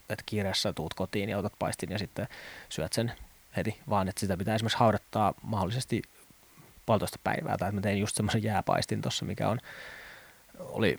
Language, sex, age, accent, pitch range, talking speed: Finnish, male, 20-39, native, 95-115 Hz, 170 wpm